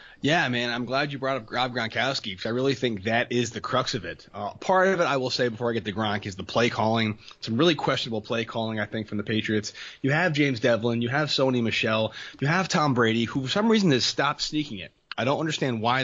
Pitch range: 105-130 Hz